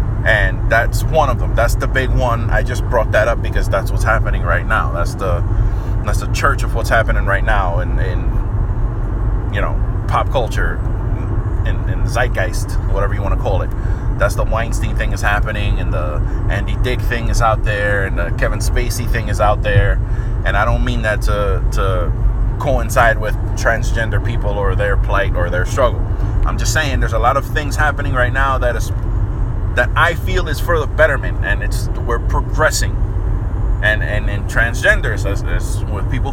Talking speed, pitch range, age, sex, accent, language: 190 wpm, 100-110 Hz, 20-39, male, American, English